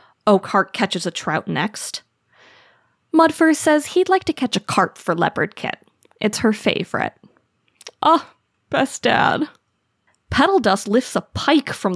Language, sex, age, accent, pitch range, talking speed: English, female, 20-39, American, 190-295 Hz, 145 wpm